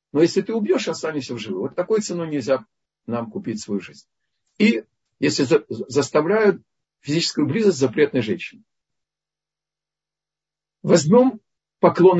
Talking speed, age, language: 125 wpm, 50-69, Russian